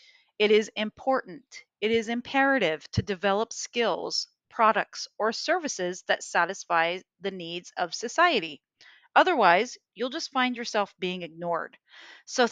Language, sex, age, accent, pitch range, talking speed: English, female, 40-59, American, 185-235 Hz, 125 wpm